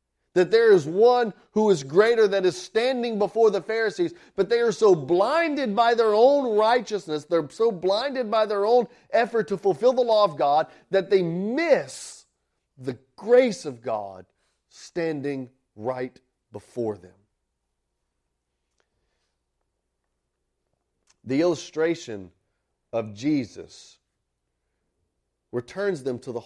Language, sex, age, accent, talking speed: English, male, 40-59, American, 120 wpm